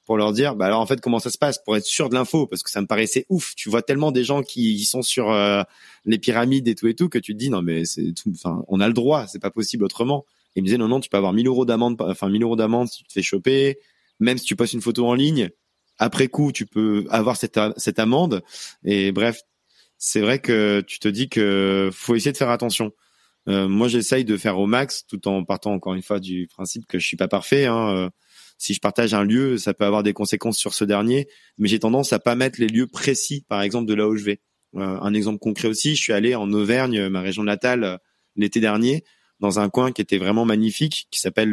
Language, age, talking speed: French, 30-49, 255 wpm